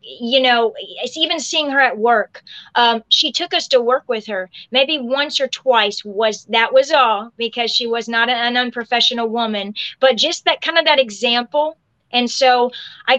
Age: 30-49